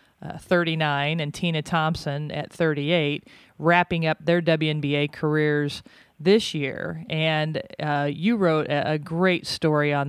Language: English